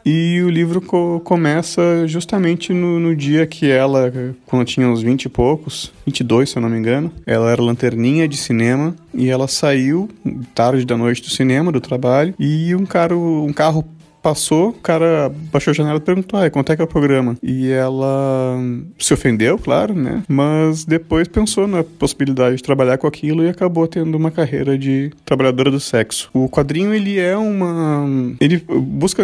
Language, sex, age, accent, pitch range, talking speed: Portuguese, male, 20-39, Brazilian, 120-155 Hz, 185 wpm